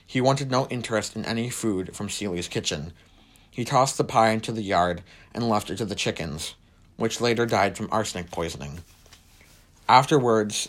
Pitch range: 90-120 Hz